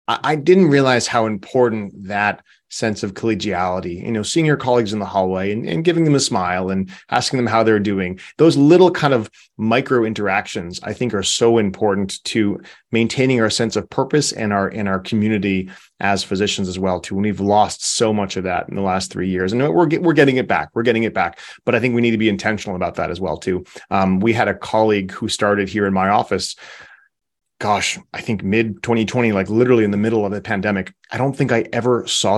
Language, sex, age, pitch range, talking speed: English, male, 30-49, 95-120 Hz, 225 wpm